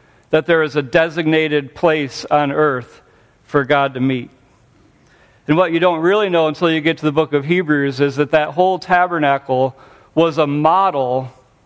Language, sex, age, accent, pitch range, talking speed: English, male, 50-69, American, 125-160 Hz, 175 wpm